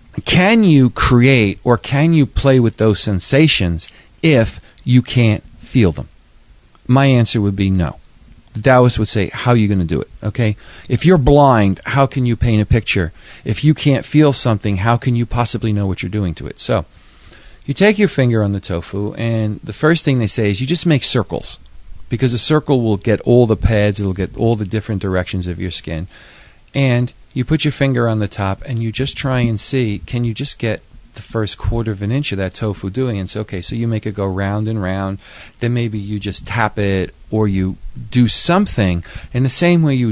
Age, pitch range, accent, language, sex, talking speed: 40-59, 100-130 Hz, American, English, male, 220 wpm